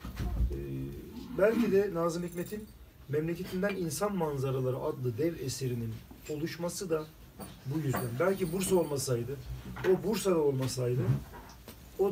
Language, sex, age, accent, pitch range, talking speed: Turkish, male, 40-59, native, 125-185 Hz, 110 wpm